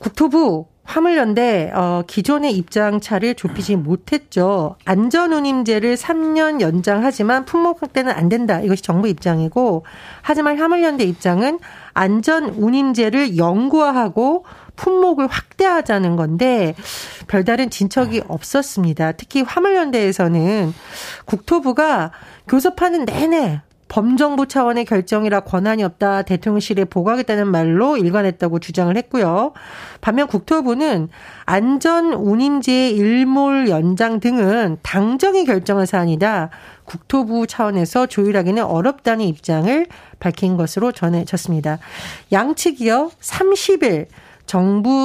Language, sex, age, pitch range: Korean, female, 40-59, 185-275 Hz